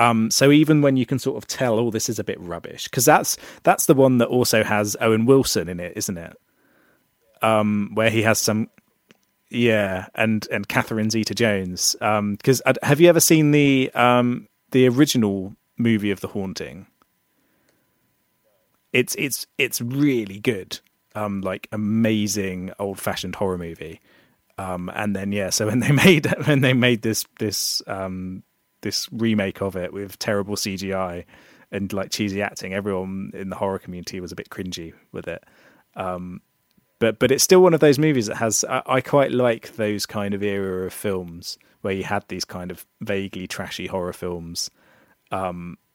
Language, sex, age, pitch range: English, male, 30-49, 95-120 Hz